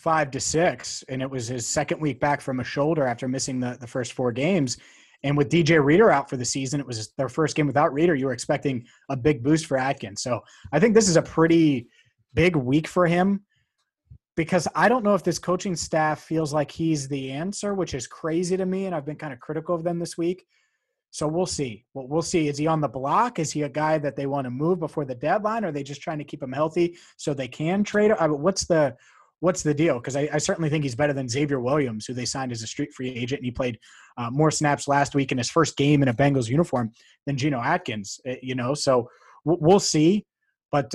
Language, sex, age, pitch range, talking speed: English, male, 30-49, 135-160 Hz, 250 wpm